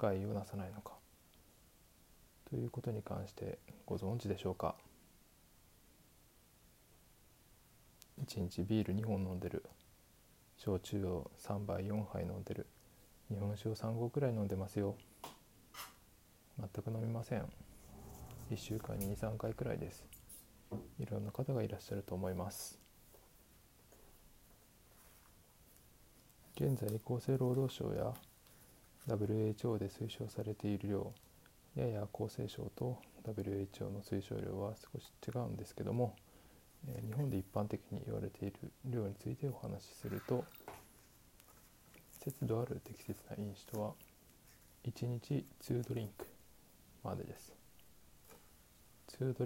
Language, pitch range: Japanese, 100-120 Hz